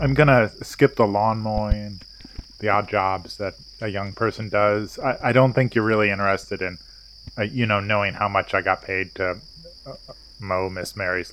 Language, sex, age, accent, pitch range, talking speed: English, male, 20-39, American, 100-120 Hz, 190 wpm